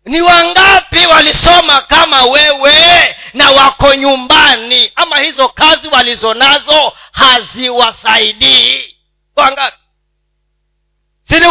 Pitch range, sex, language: 235-315 Hz, male, Swahili